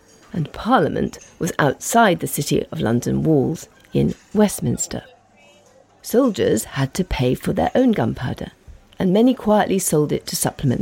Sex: female